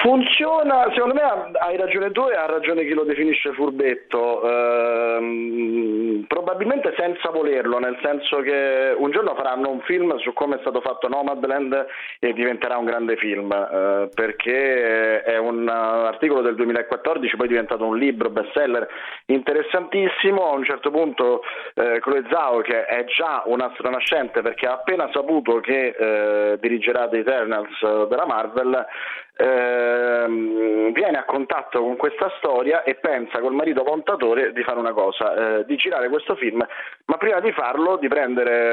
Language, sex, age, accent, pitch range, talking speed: Italian, male, 30-49, native, 115-160 Hz, 155 wpm